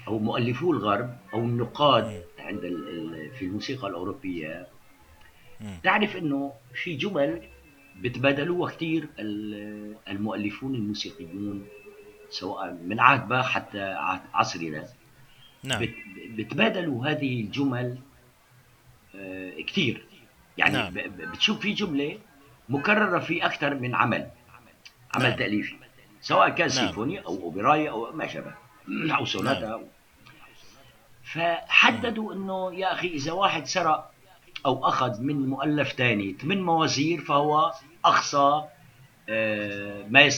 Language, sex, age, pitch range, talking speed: Arabic, male, 60-79, 120-165 Hz, 95 wpm